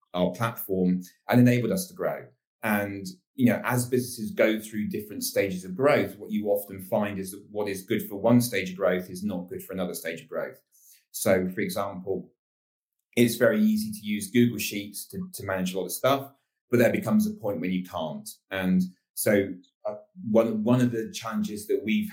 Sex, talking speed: male, 205 wpm